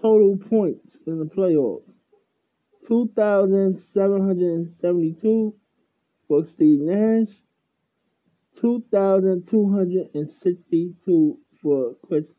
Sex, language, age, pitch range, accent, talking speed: male, English, 20-39, 165-205 Hz, American, 50 wpm